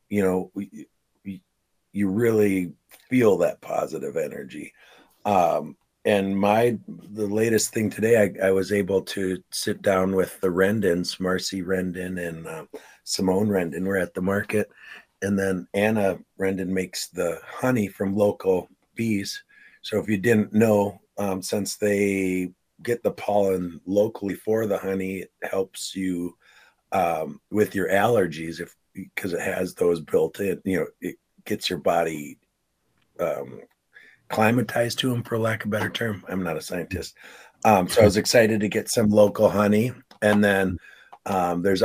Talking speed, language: 160 wpm, English